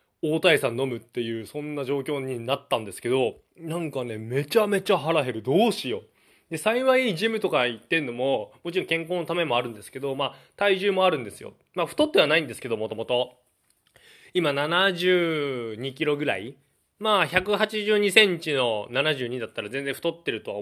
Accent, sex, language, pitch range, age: native, male, Japanese, 120-195 Hz, 20-39